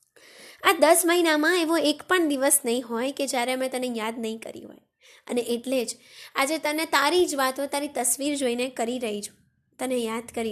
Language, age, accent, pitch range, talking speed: Gujarati, 20-39, native, 255-300 Hz, 135 wpm